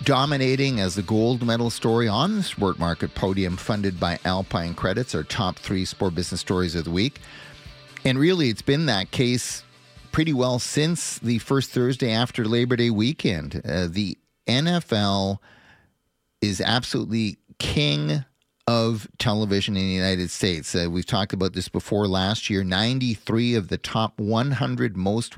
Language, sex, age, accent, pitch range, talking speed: English, male, 40-59, American, 95-120 Hz, 155 wpm